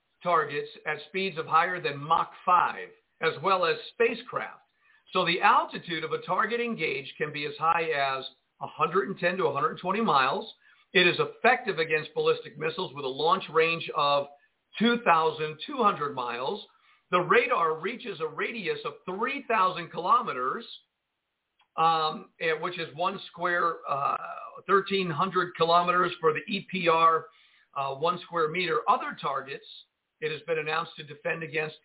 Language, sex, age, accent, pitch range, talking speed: English, male, 50-69, American, 160-235 Hz, 140 wpm